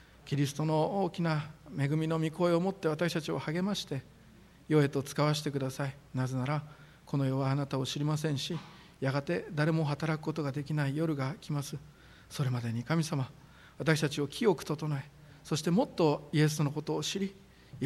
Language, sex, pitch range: Japanese, male, 140-165 Hz